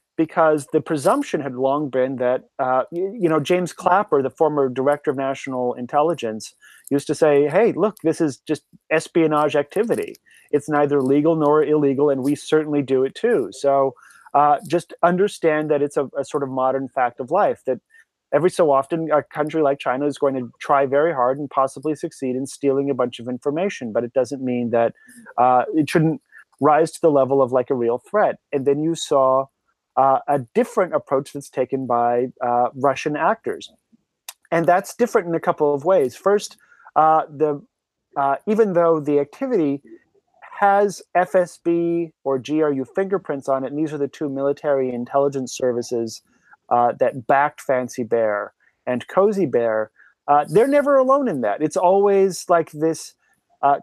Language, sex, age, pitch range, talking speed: English, male, 30-49, 135-170 Hz, 175 wpm